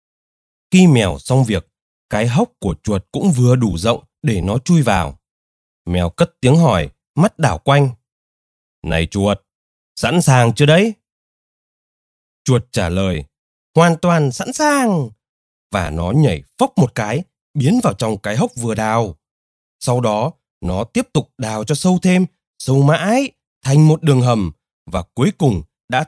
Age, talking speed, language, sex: 20-39, 155 wpm, Vietnamese, male